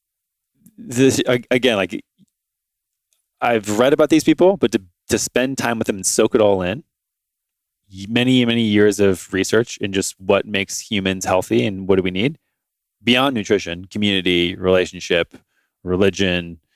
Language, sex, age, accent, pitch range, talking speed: English, male, 20-39, American, 95-115 Hz, 145 wpm